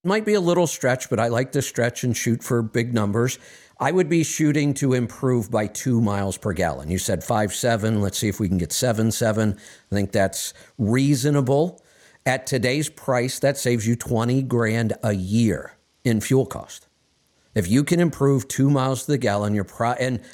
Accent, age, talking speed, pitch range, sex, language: American, 50-69, 200 wpm, 105-135 Hz, male, English